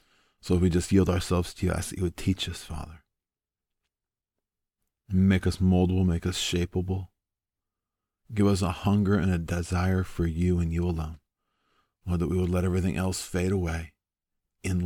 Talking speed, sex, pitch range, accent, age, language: 175 wpm, male, 85-100 Hz, American, 40-59, English